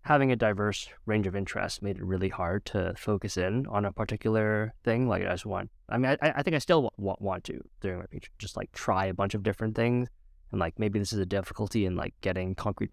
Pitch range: 90-115 Hz